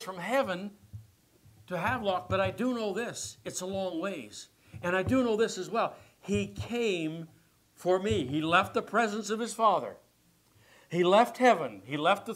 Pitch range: 135-215 Hz